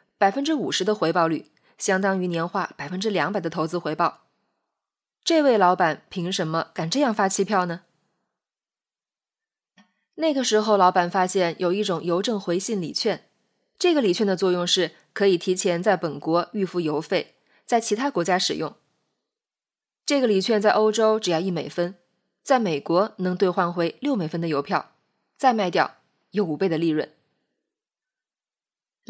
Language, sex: Chinese, female